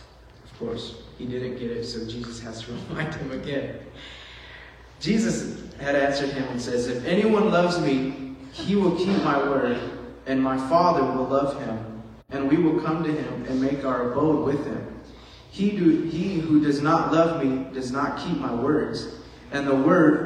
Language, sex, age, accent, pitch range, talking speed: English, male, 30-49, American, 125-155 Hz, 180 wpm